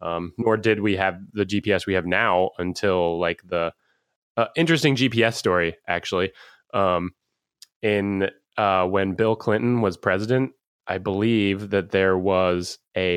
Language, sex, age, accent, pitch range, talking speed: English, male, 20-39, American, 95-110 Hz, 145 wpm